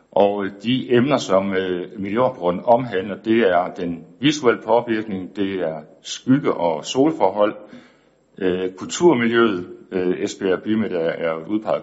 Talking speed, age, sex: 120 wpm, 60-79, male